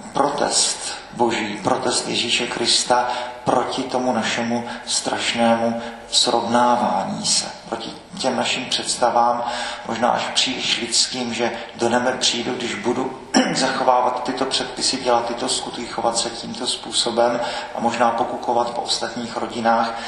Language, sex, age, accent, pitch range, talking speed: Czech, male, 40-59, native, 105-120 Hz, 125 wpm